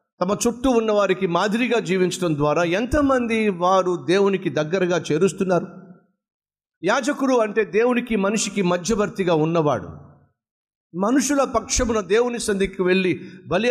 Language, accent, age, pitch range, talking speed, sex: Telugu, native, 50-69, 185-230 Hz, 100 wpm, male